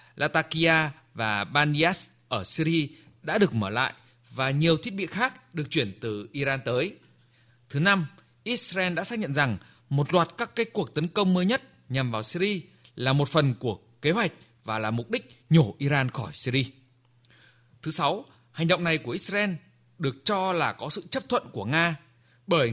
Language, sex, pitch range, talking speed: Vietnamese, male, 125-180 Hz, 180 wpm